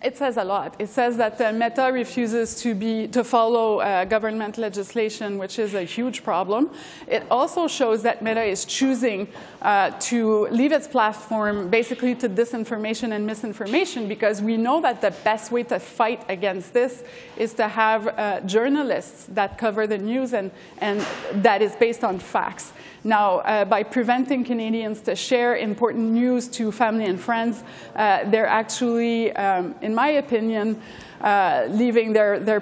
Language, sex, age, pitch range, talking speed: English, female, 20-39, 215-240 Hz, 165 wpm